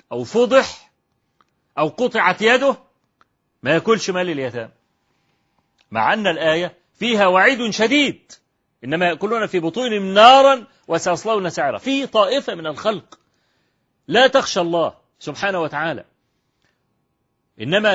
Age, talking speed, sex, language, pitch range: 40-59, 110 wpm, male, Arabic, 190-260 Hz